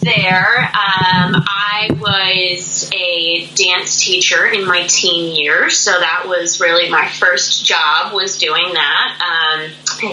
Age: 20-39